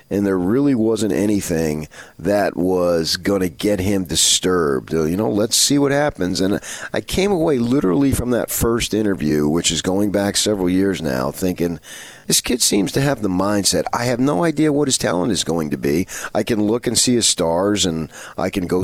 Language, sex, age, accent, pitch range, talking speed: English, male, 40-59, American, 80-100 Hz, 205 wpm